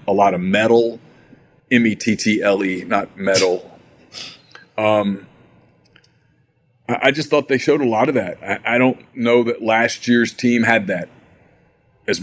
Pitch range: 105-120 Hz